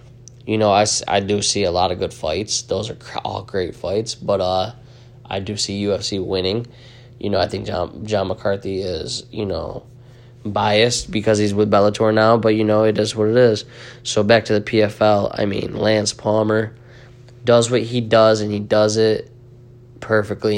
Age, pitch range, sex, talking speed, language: 20-39, 100-120 Hz, male, 190 wpm, English